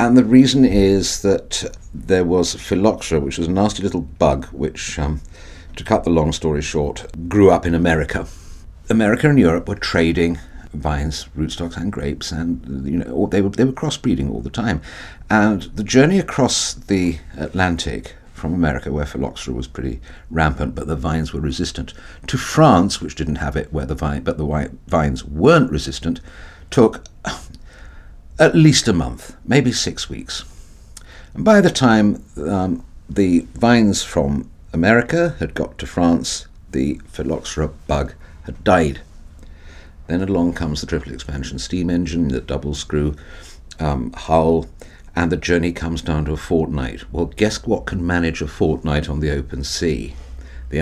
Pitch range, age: 75-90 Hz, 60-79